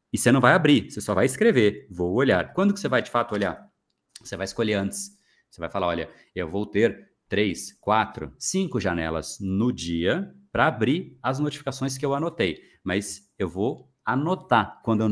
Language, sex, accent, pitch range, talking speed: Portuguese, male, Brazilian, 100-135 Hz, 190 wpm